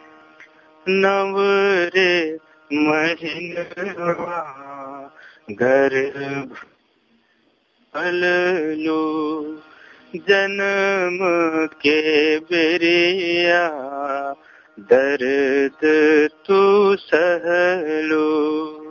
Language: Hindi